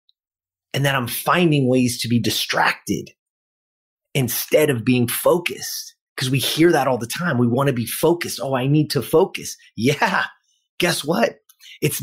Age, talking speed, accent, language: 30-49, 165 wpm, American, English